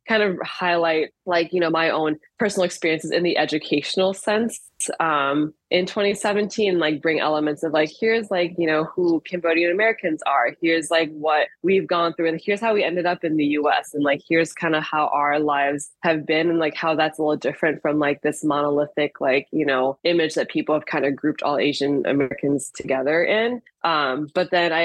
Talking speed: 205 wpm